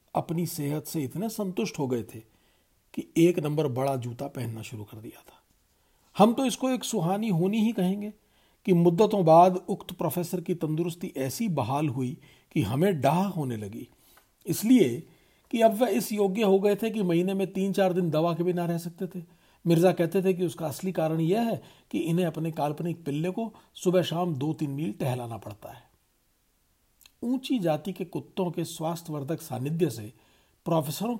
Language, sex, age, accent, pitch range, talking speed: Hindi, male, 50-69, native, 150-205 Hz, 180 wpm